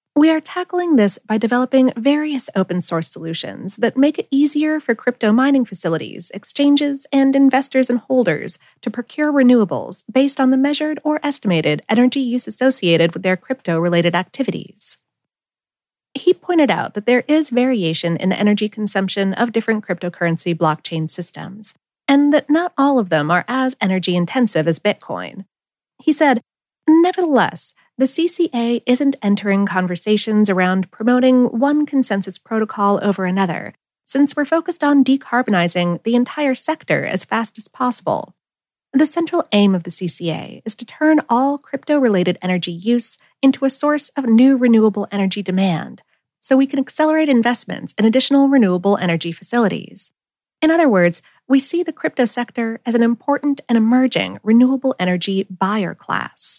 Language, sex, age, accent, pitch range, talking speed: English, female, 30-49, American, 190-275 Hz, 150 wpm